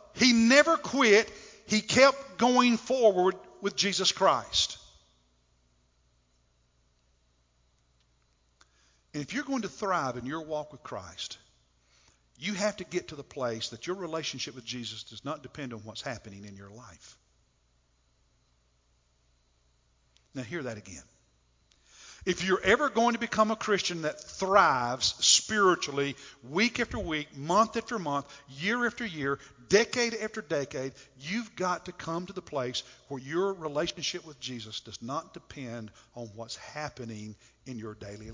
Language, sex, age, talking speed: English, male, 50-69, 140 wpm